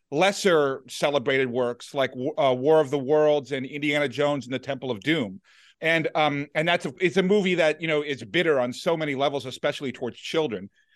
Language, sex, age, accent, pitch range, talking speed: English, male, 40-59, American, 140-175 Hz, 205 wpm